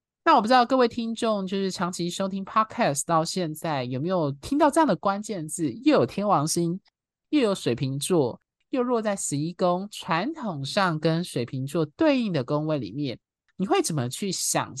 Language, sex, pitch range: Chinese, male, 150-215 Hz